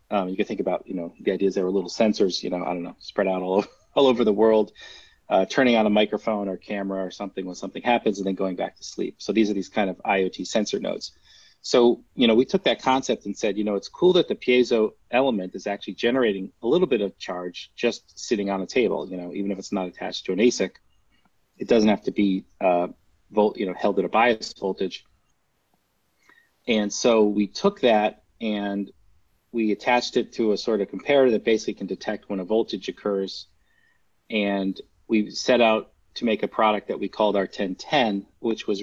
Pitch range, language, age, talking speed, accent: 95-110 Hz, English, 30-49, 225 wpm, American